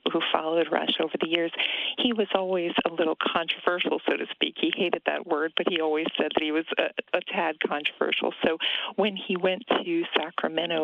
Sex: female